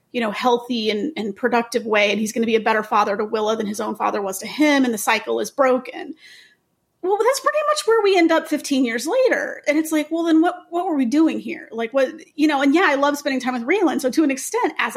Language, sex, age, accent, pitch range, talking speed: English, female, 30-49, American, 230-290 Hz, 275 wpm